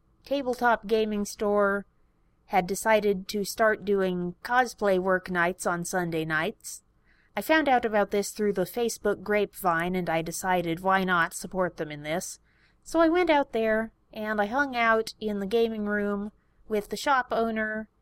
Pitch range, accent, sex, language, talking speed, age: 185-230 Hz, American, female, English, 165 wpm, 30-49